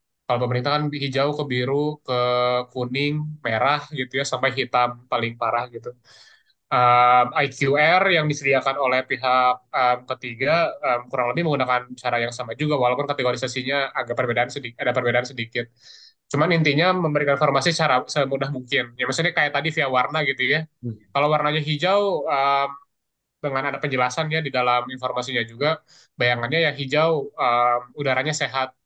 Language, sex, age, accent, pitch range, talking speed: Indonesian, male, 20-39, native, 125-145 Hz, 150 wpm